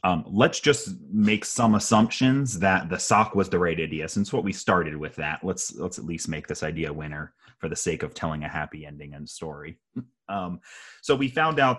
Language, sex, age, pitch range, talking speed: English, male, 30-49, 80-100 Hz, 215 wpm